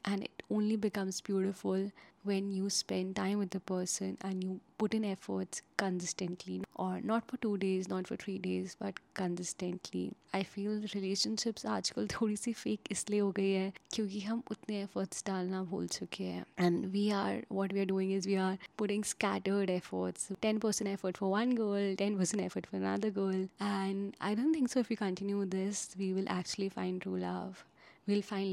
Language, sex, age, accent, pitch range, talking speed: English, female, 20-39, Indian, 185-210 Hz, 175 wpm